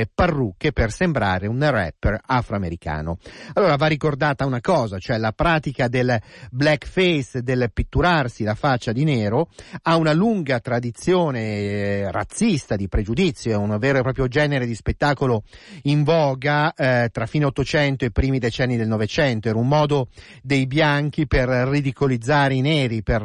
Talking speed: 150 wpm